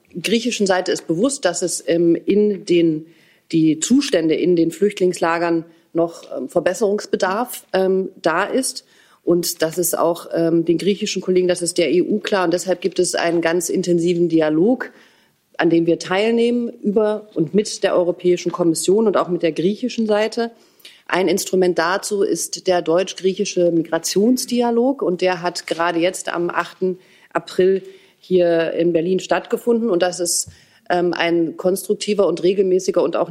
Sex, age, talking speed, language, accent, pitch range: female, 40-59, 150 wpm, German, German, 165-195 Hz